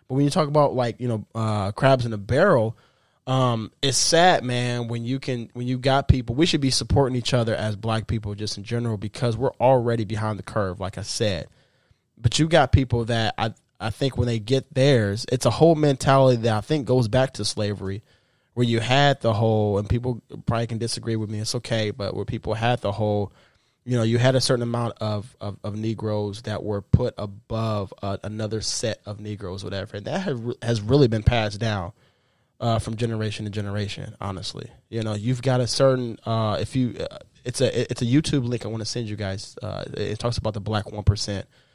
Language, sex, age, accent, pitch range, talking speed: English, male, 20-39, American, 105-125 Hz, 220 wpm